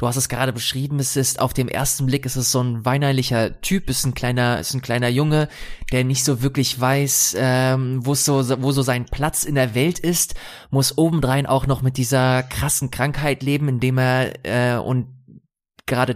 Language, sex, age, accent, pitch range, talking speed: German, male, 20-39, German, 130-145 Hz, 210 wpm